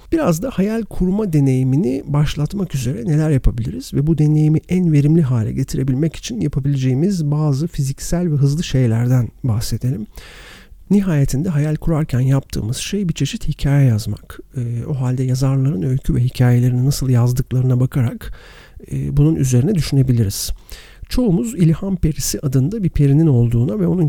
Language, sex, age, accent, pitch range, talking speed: Turkish, male, 50-69, native, 120-150 Hz, 140 wpm